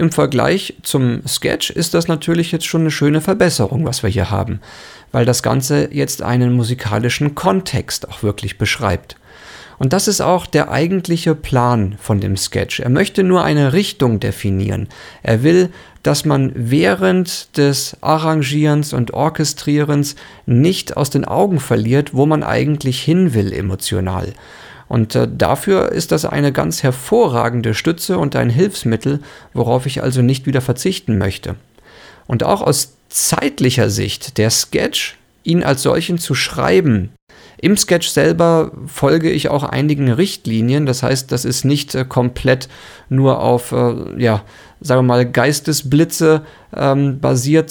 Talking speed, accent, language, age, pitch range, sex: 145 wpm, German, English, 40-59, 120-160 Hz, male